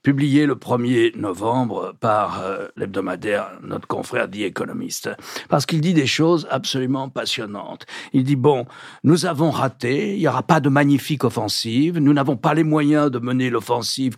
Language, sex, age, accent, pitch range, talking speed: French, male, 60-79, French, 115-155 Hz, 170 wpm